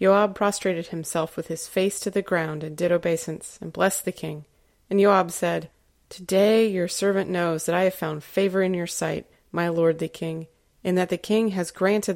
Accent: American